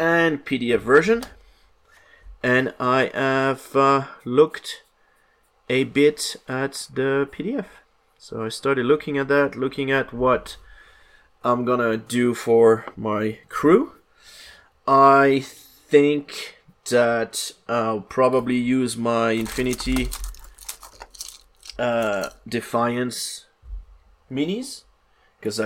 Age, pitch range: 30-49, 110-145 Hz